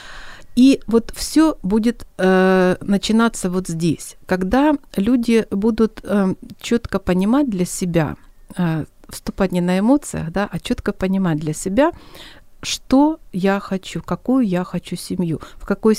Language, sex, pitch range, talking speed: Ukrainian, female, 175-225 Hz, 135 wpm